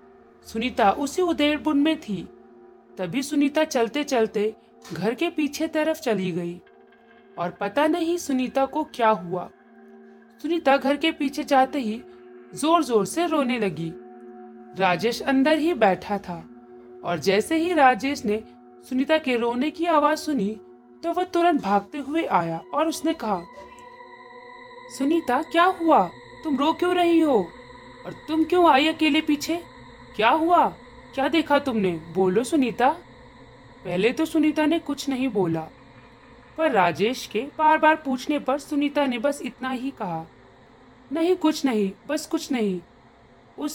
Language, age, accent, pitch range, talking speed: Hindi, 40-59, native, 200-305 Hz, 145 wpm